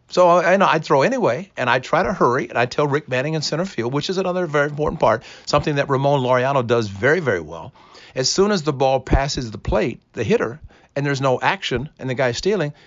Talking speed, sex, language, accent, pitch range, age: 230 wpm, male, English, American, 110-145 Hz, 50-69